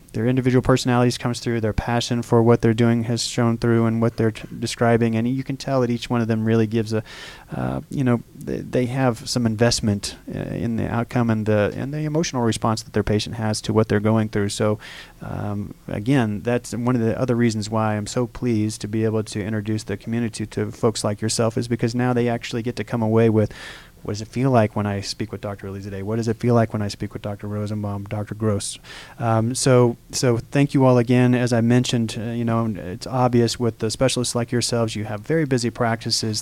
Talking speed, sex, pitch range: 235 wpm, male, 110-120 Hz